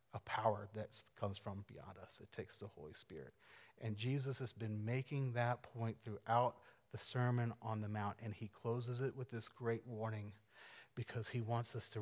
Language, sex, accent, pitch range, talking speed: English, male, American, 105-125 Hz, 190 wpm